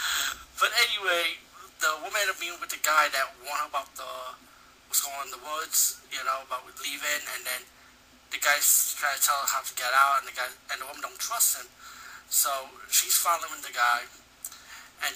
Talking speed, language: 200 wpm, English